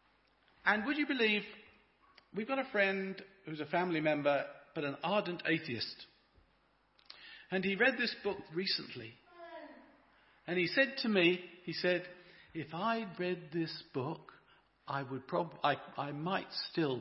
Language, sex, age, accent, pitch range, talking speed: English, male, 50-69, British, 150-210 Hz, 145 wpm